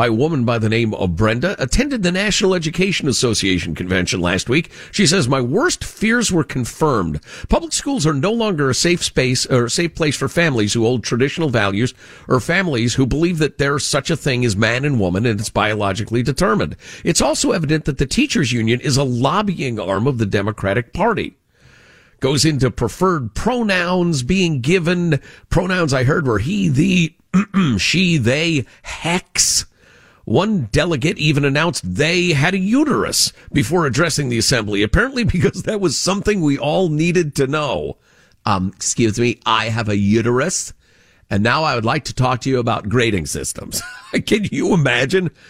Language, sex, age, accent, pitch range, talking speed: English, male, 50-69, American, 120-175 Hz, 175 wpm